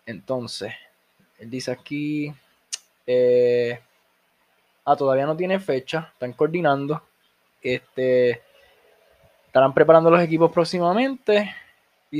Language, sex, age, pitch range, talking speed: Spanish, male, 20-39, 130-185 Hz, 95 wpm